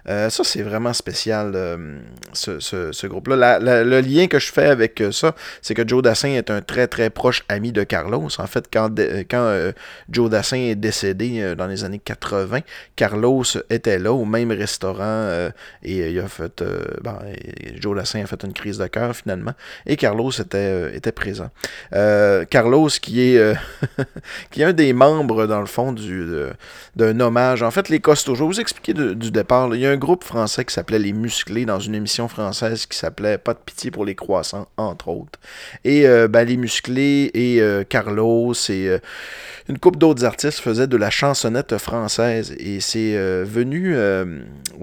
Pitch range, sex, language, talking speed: 105-130 Hz, male, French, 205 wpm